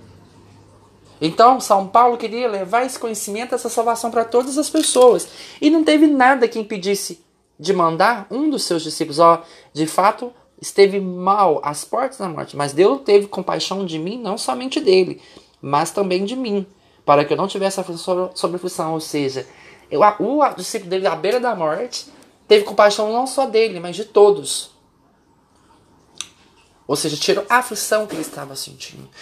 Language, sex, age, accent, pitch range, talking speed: Portuguese, male, 20-39, Brazilian, 160-225 Hz, 165 wpm